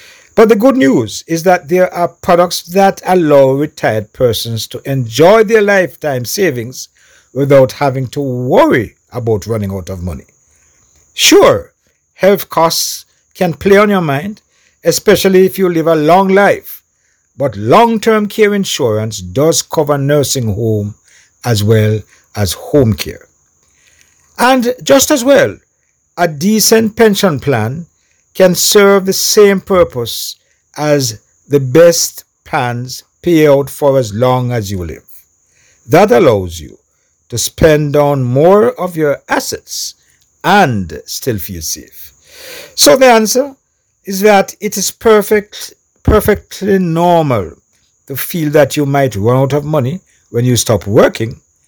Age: 50-69